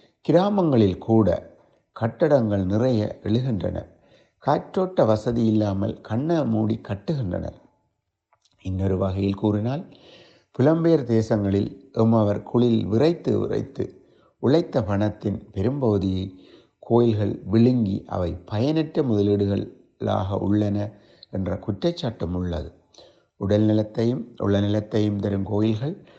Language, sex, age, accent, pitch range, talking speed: Tamil, male, 60-79, native, 100-120 Hz, 85 wpm